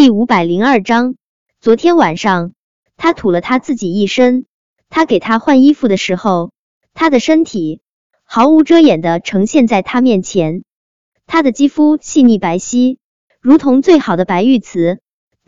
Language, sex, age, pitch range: Chinese, male, 20-39, 195-275 Hz